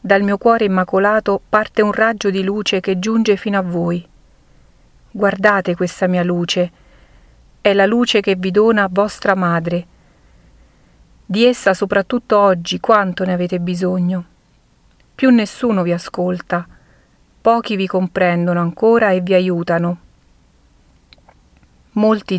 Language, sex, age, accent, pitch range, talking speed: Italian, female, 40-59, native, 175-205 Hz, 125 wpm